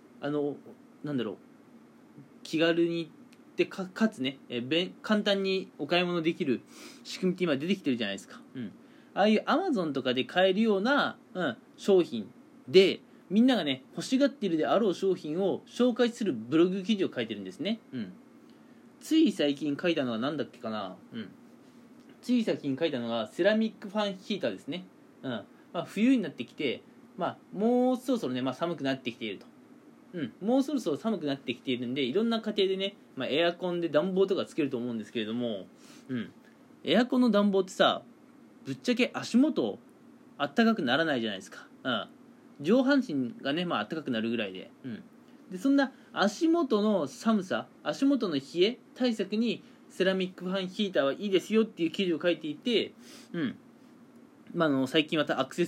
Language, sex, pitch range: Japanese, male, 165-250 Hz